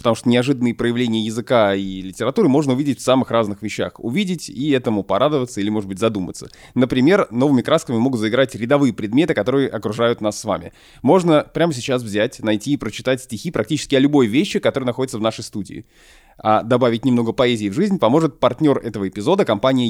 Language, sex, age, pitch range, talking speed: Russian, male, 20-39, 110-145 Hz, 185 wpm